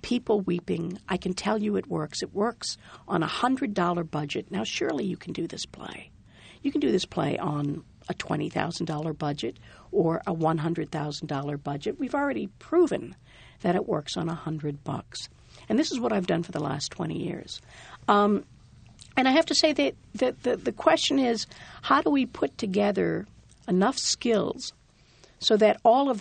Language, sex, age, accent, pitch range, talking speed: English, female, 60-79, American, 160-235 Hz, 175 wpm